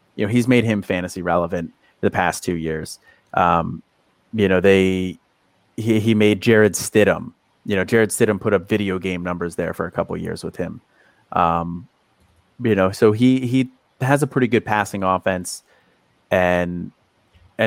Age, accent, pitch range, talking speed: 30-49, American, 95-115 Hz, 175 wpm